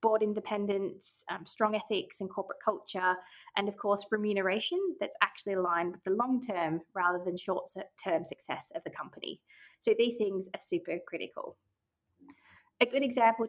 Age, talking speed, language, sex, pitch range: 20-39, 150 wpm, English, female, 185-235 Hz